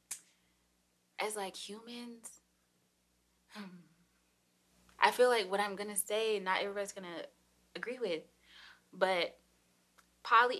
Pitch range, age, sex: 145-200 Hz, 20-39, female